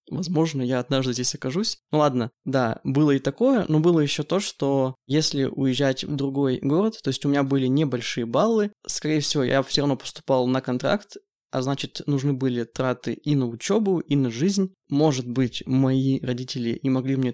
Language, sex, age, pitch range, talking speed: Russian, male, 20-39, 130-155 Hz, 185 wpm